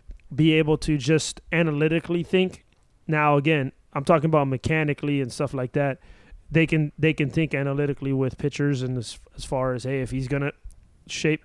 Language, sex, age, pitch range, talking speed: English, male, 20-39, 135-160 Hz, 185 wpm